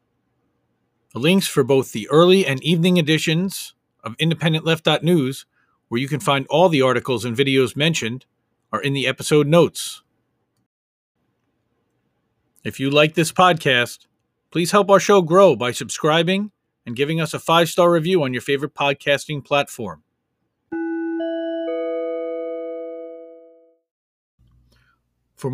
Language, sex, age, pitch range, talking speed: English, male, 40-59, 135-170 Hz, 115 wpm